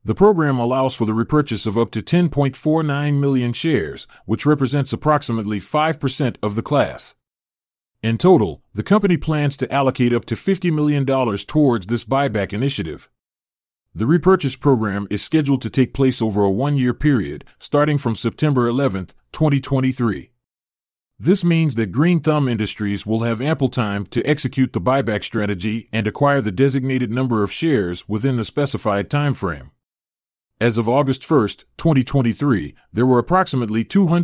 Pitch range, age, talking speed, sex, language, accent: 110-145 Hz, 30-49, 150 wpm, male, English, American